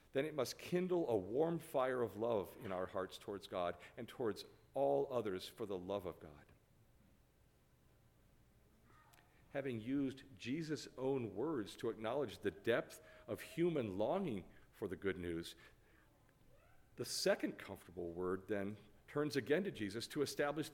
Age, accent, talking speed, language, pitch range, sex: 50-69, American, 145 wpm, English, 100-145 Hz, male